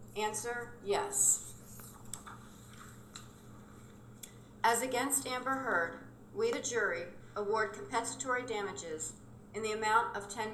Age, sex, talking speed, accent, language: 40-59, female, 95 wpm, American, English